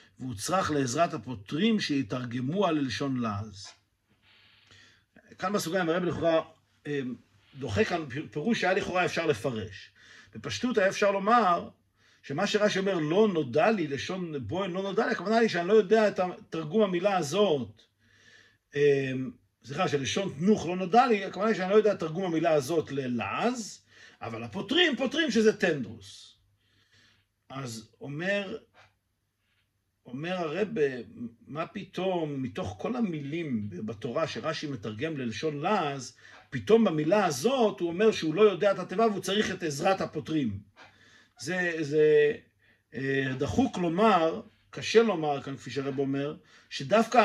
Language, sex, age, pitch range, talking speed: Hebrew, male, 50-69, 135-205 Hz, 130 wpm